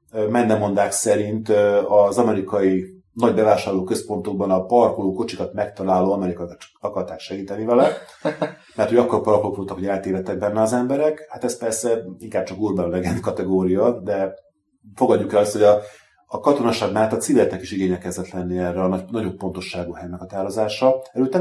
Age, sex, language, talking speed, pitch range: 30-49, male, Hungarian, 155 wpm, 90-115 Hz